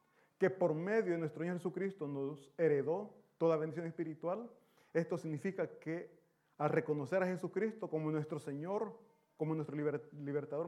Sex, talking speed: male, 145 wpm